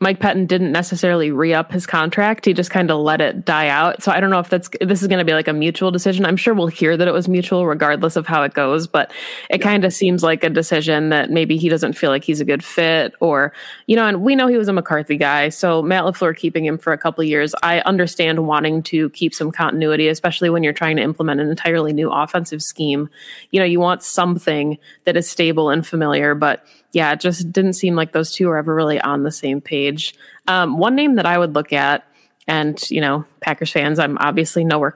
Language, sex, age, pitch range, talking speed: English, female, 20-39, 155-185 Hz, 245 wpm